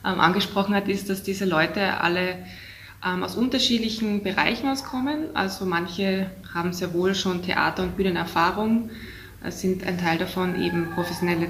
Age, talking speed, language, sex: 20-39, 135 wpm, German, female